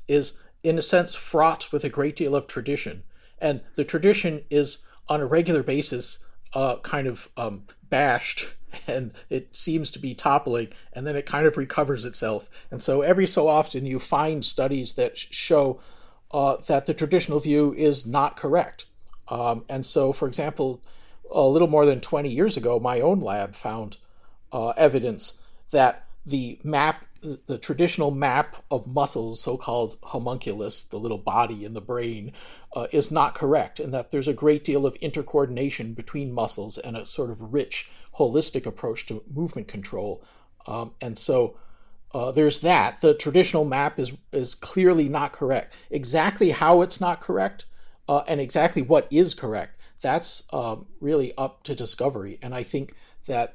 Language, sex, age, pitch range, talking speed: English, male, 40-59, 125-155 Hz, 165 wpm